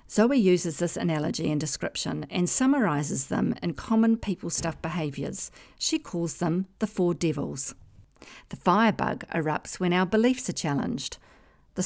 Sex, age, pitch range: female, 50-69, 155-205 Hz